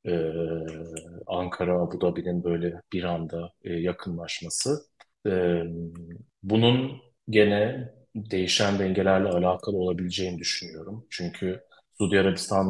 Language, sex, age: Turkish, male, 40-59